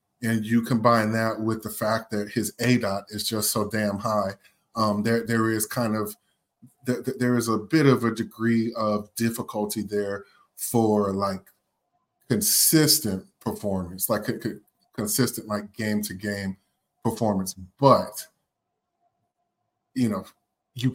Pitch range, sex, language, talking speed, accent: 105-115 Hz, male, English, 145 wpm, American